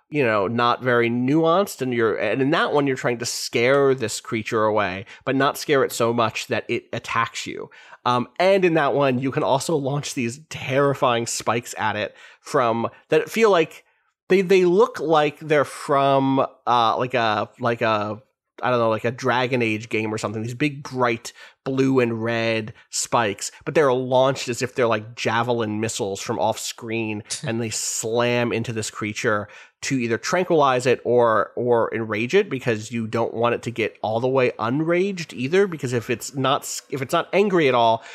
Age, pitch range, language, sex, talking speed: 30-49, 115-140 Hz, English, male, 190 wpm